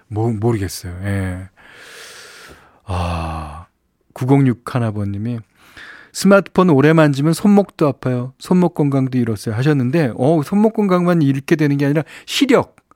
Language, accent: Korean, native